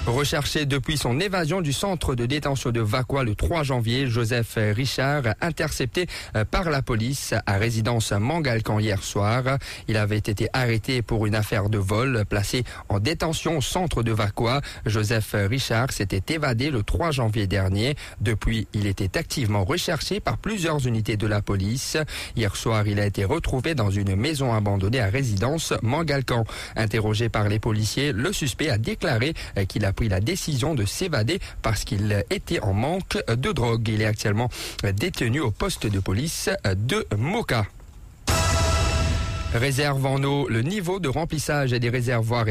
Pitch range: 105-135 Hz